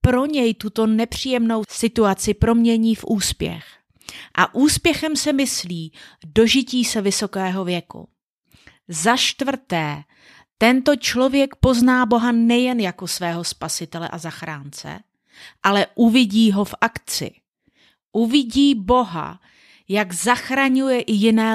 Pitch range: 185-245 Hz